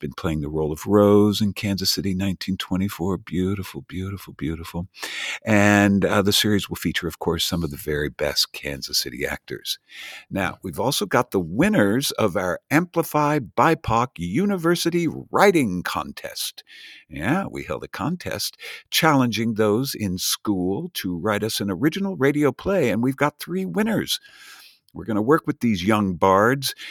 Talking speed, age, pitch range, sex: 160 wpm, 50-69, 90-140 Hz, male